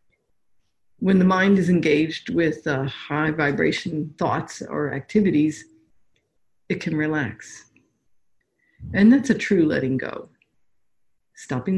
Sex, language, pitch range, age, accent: female, Japanese, 150-210 Hz, 60-79, American